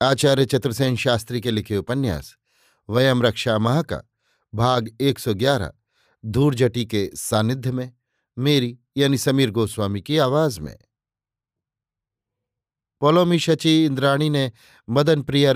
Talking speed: 115 wpm